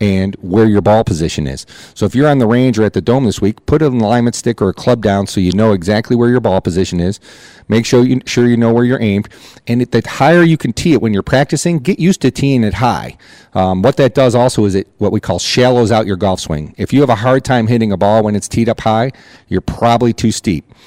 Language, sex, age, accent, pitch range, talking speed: English, male, 40-59, American, 100-120 Hz, 270 wpm